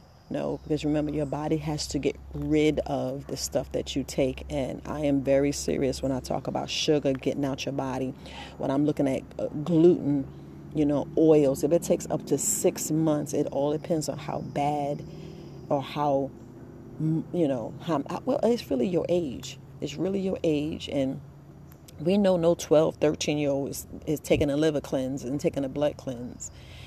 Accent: American